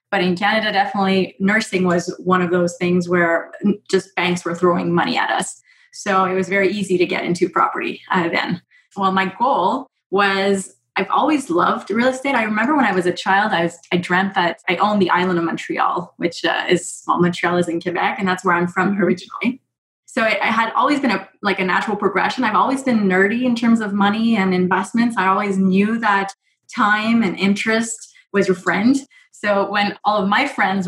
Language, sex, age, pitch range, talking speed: English, female, 20-39, 180-210 Hz, 210 wpm